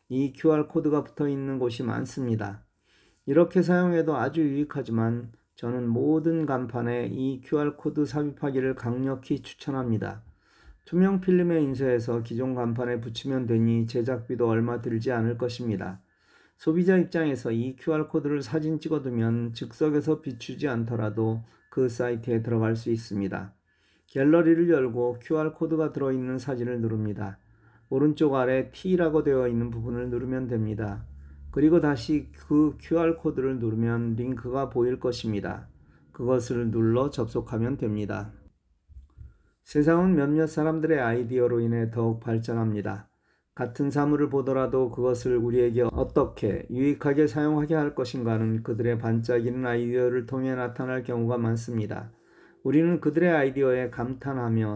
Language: Korean